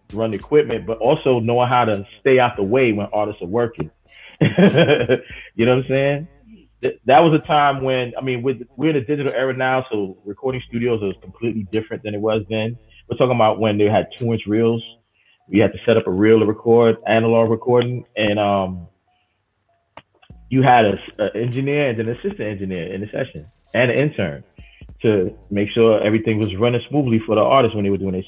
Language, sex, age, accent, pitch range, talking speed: English, male, 30-49, American, 95-120 Hz, 205 wpm